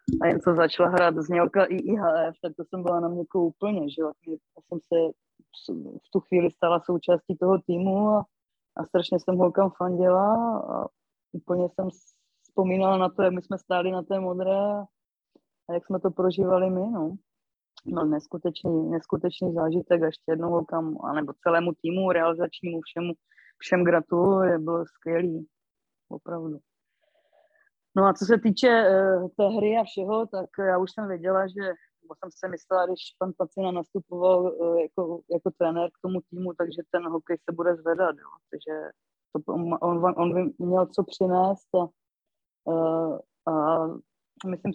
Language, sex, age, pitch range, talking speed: Czech, female, 20-39, 170-190 Hz, 160 wpm